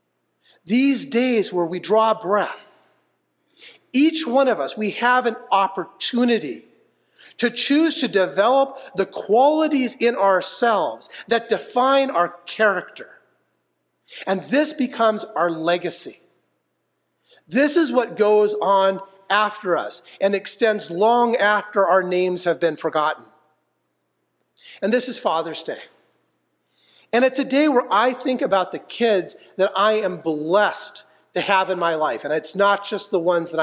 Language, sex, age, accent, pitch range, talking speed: English, male, 40-59, American, 180-245 Hz, 140 wpm